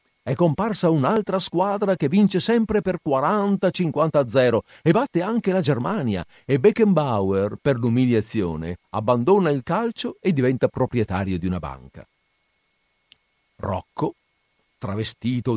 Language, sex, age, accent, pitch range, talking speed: Italian, male, 50-69, native, 110-155 Hz, 110 wpm